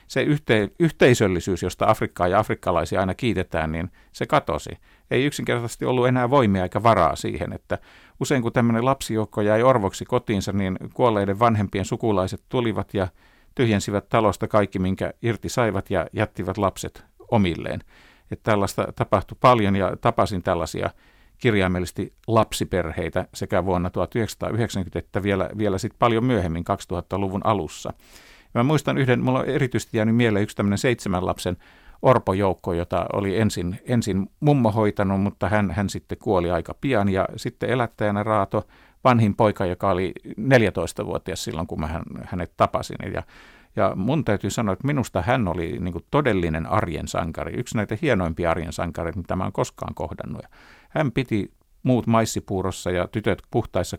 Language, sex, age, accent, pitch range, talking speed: Finnish, male, 50-69, native, 90-115 Hz, 145 wpm